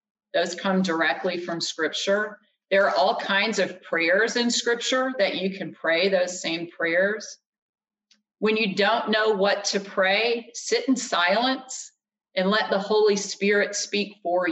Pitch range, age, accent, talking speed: 185-215 Hz, 40-59, American, 155 wpm